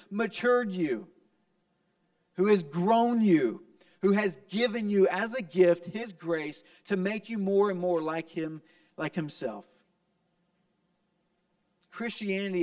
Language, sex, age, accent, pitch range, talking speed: English, male, 40-59, American, 160-180 Hz, 125 wpm